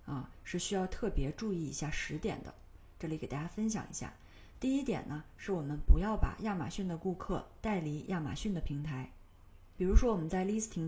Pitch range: 150-200 Hz